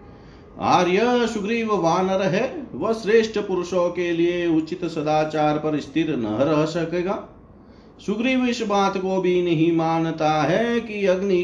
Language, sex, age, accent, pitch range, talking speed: Hindi, male, 50-69, native, 145-195 Hz, 135 wpm